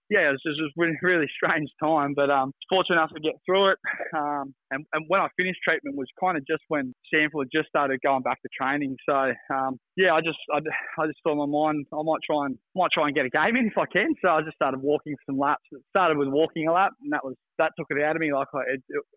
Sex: male